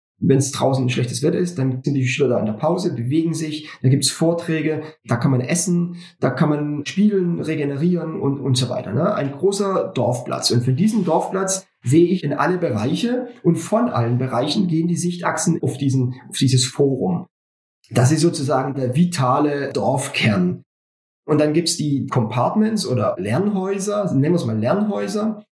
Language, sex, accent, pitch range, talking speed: German, male, German, 130-180 Hz, 185 wpm